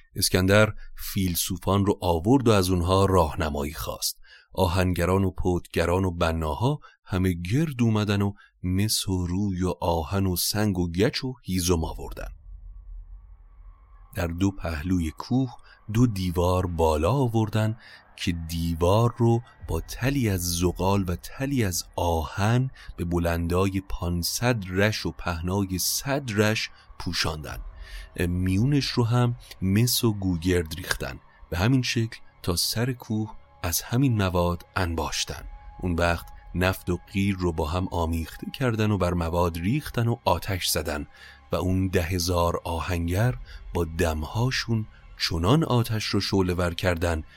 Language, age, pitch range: Persian, 40-59, 85-110 Hz